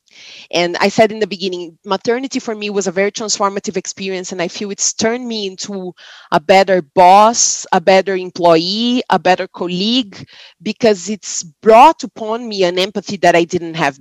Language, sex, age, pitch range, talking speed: English, female, 30-49, 180-210 Hz, 175 wpm